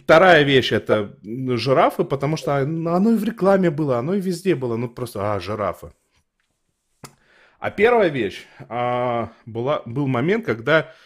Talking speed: 135 wpm